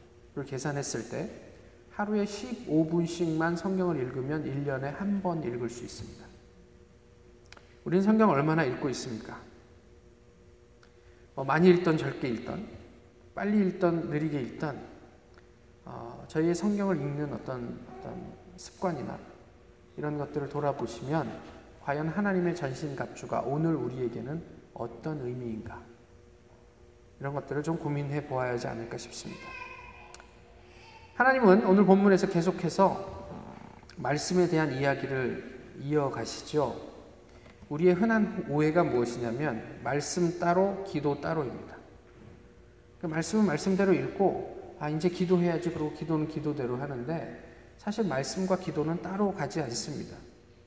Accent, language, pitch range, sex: native, Korean, 130-185 Hz, male